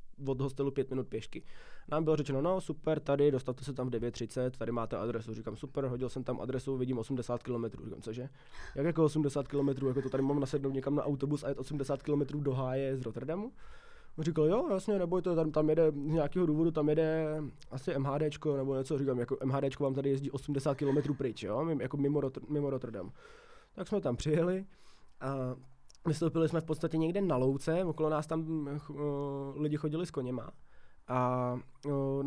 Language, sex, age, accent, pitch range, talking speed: Czech, male, 20-39, native, 130-155 Hz, 195 wpm